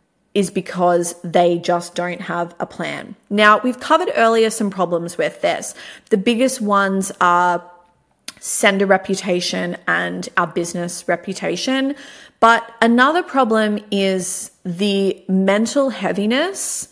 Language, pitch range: English, 175-220 Hz